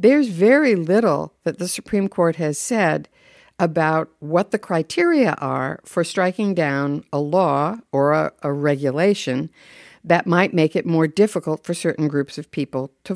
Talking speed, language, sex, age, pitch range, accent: 160 wpm, English, female, 60-79, 145-190 Hz, American